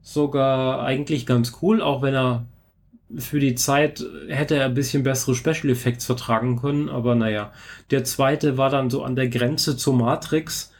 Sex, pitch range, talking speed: male, 120-135 Hz, 170 wpm